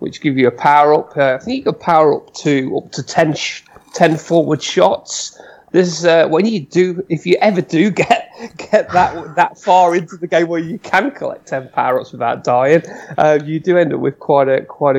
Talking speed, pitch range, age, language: 225 wpm, 120-160 Hz, 30-49, English